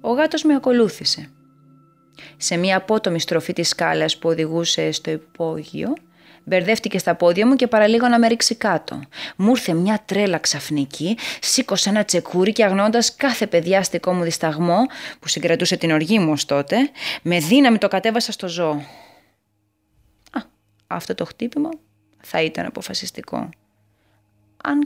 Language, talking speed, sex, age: Greek, 140 wpm, female, 20-39